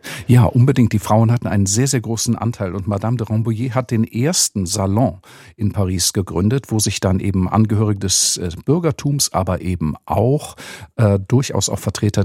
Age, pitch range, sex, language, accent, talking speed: 50-69, 100-130 Hz, male, German, German, 175 wpm